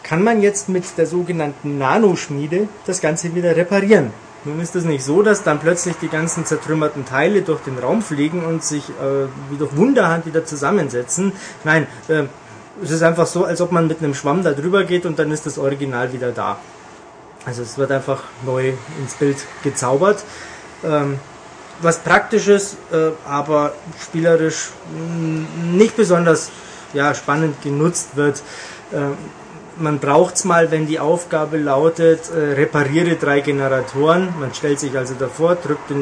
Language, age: German, 20-39